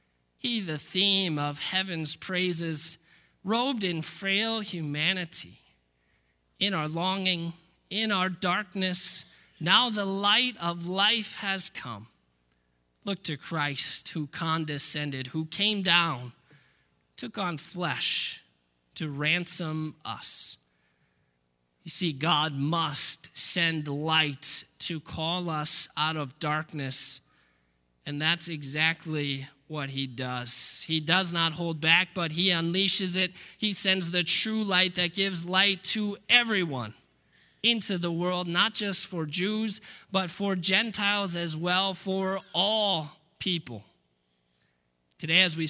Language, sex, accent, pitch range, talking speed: English, male, American, 150-190 Hz, 120 wpm